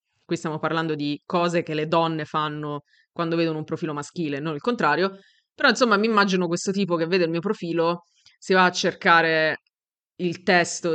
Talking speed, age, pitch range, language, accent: 185 wpm, 20-39, 160-180 Hz, Italian, native